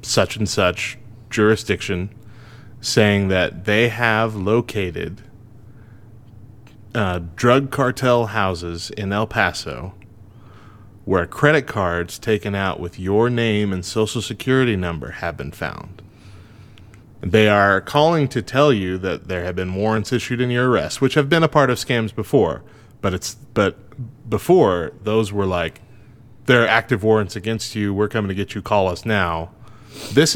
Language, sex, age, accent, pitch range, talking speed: English, male, 30-49, American, 100-120 Hz, 150 wpm